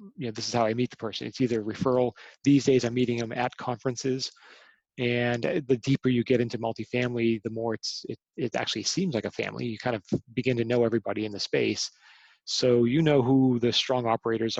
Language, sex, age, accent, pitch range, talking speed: English, male, 30-49, American, 115-130 Hz, 225 wpm